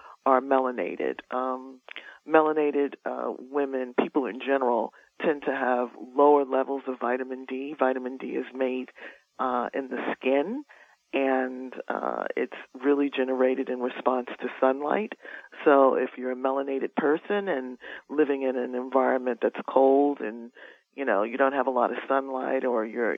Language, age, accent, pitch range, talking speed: English, 40-59, American, 125-140 Hz, 155 wpm